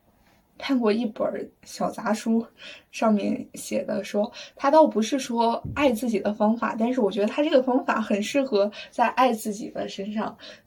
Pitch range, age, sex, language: 200-240 Hz, 20-39, female, Chinese